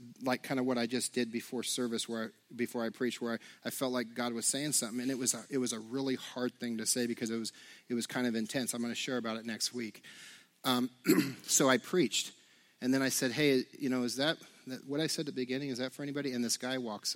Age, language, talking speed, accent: 40-59, English, 275 wpm, American